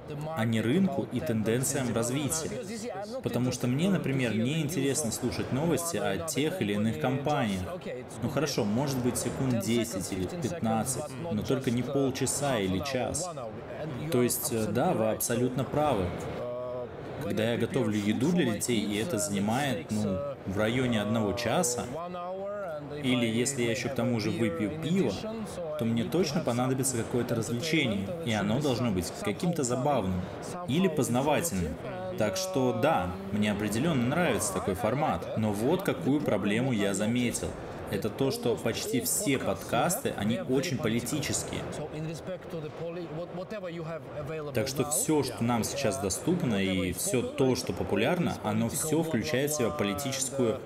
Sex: male